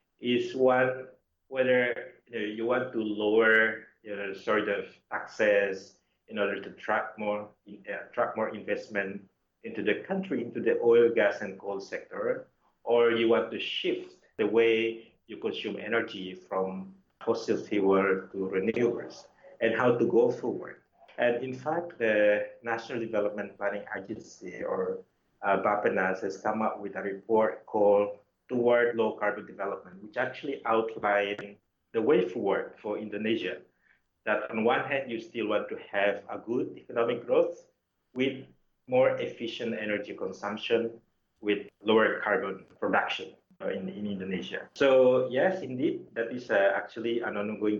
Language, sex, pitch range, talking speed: English, male, 105-130 Hz, 140 wpm